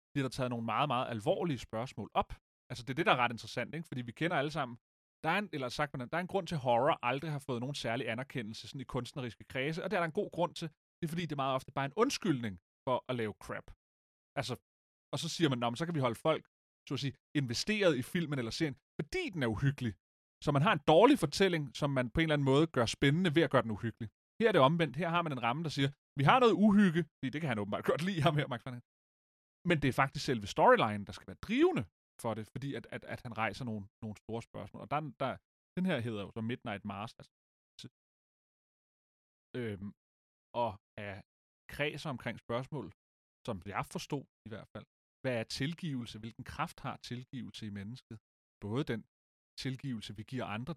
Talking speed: 230 wpm